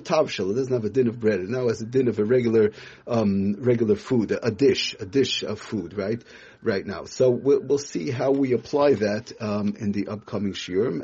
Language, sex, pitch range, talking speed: English, male, 105-120 Hz, 215 wpm